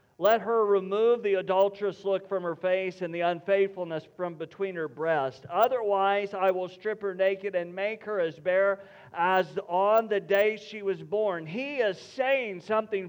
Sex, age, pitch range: male, 50-69, 145-200 Hz